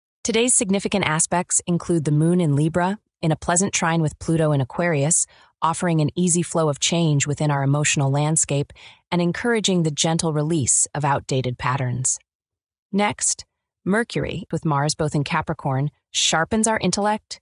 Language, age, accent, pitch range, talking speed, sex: English, 30-49, American, 145-175 Hz, 150 wpm, female